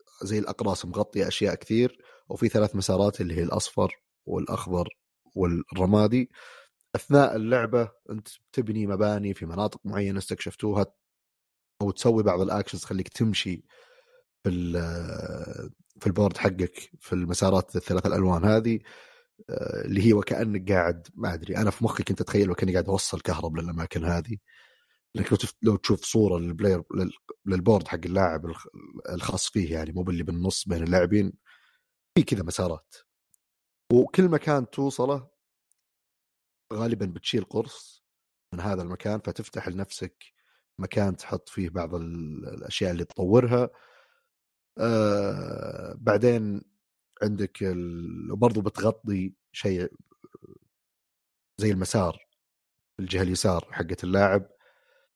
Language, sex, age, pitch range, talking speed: Arabic, male, 30-49, 90-115 Hz, 115 wpm